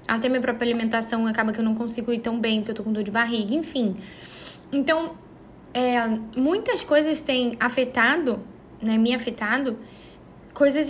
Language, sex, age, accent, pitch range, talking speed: Portuguese, female, 10-29, Brazilian, 230-270 Hz, 165 wpm